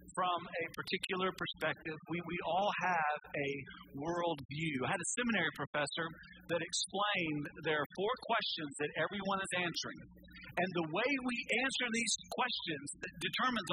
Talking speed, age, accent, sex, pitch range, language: 150 wpm, 50-69, American, male, 165-230 Hz, English